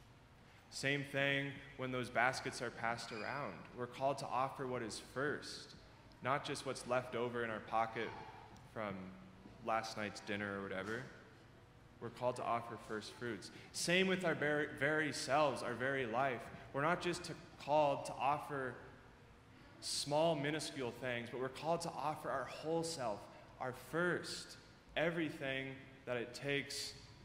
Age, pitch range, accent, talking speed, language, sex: 20-39, 115-140 Hz, American, 145 wpm, English, male